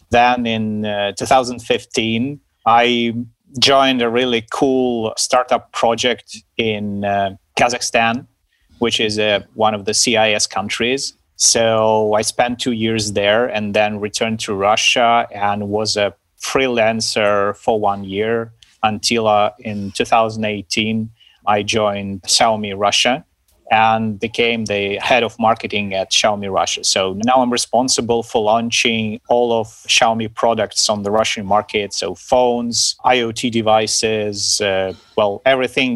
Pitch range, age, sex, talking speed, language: 100-115 Hz, 30-49, male, 130 wpm, English